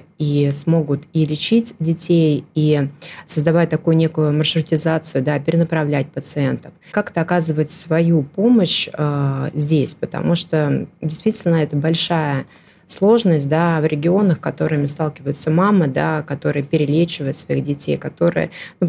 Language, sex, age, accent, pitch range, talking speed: Russian, female, 20-39, native, 150-170 Hz, 120 wpm